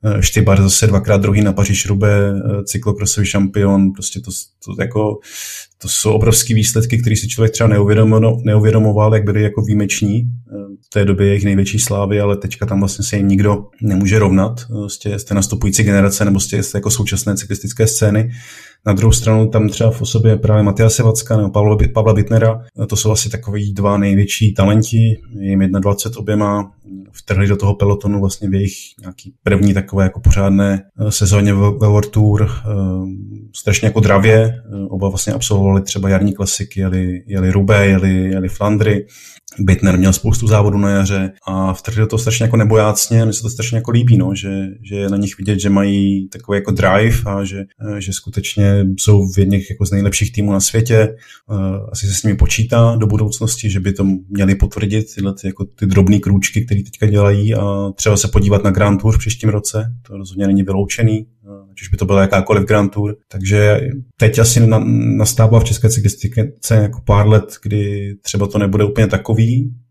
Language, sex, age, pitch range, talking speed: Slovak, male, 20-39, 100-110 Hz, 180 wpm